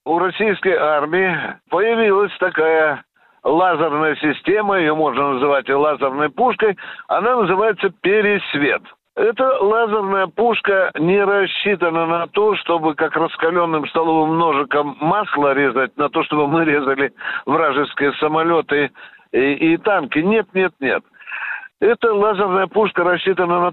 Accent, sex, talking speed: native, male, 120 wpm